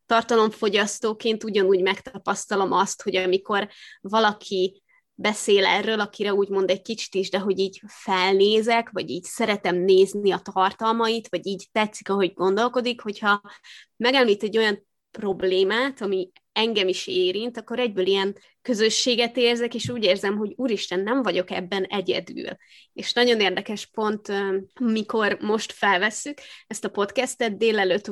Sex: female